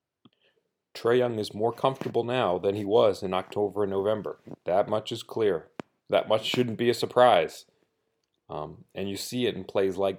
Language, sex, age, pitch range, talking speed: English, male, 30-49, 95-115 Hz, 185 wpm